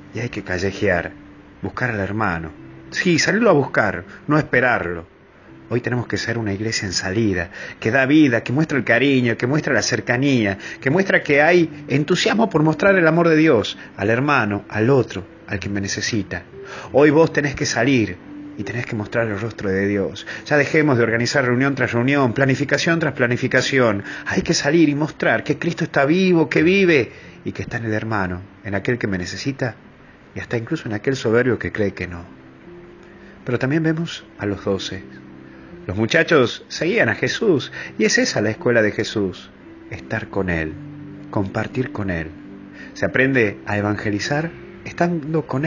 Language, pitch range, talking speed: Spanish, 100-150 Hz, 180 wpm